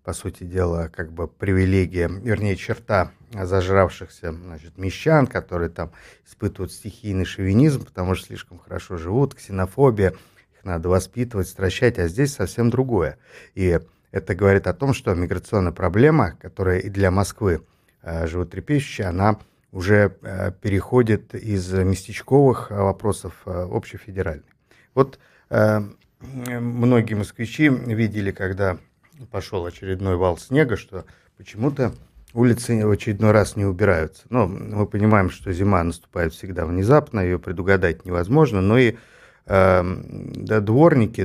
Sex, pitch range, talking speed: male, 90-110 Hz, 130 wpm